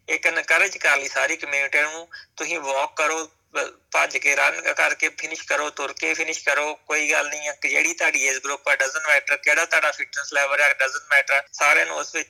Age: 30-49